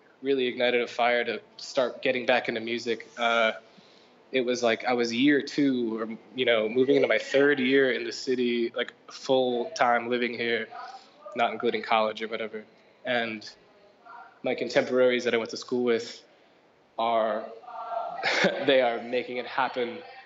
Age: 20-39